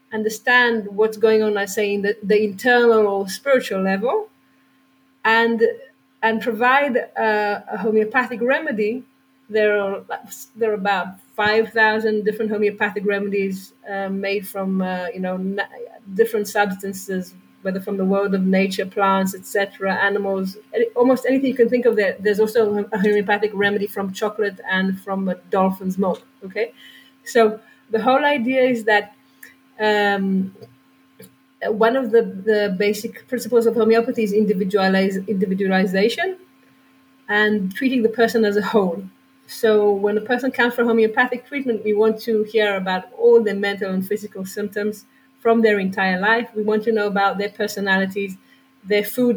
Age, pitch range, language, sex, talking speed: 30-49, 200-245 Hz, English, female, 150 wpm